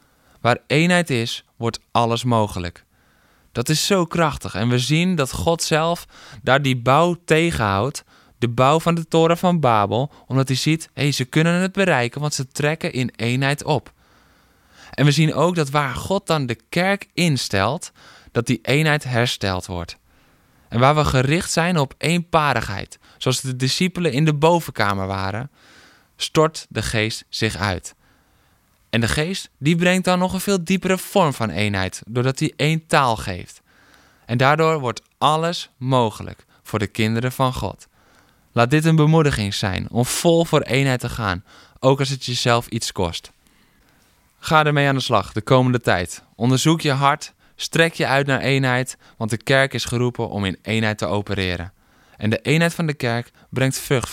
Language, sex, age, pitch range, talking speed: Dutch, male, 20-39, 110-155 Hz, 170 wpm